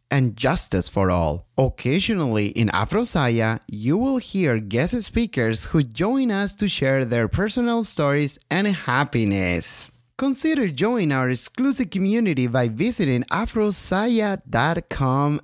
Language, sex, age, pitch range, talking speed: English, male, 30-49, 120-195 Hz, 115 wpm